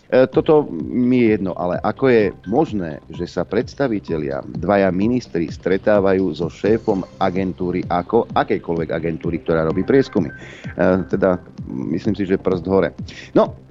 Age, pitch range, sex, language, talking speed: 40-59, 90-115 Hz, male, Slovak, 130 wpm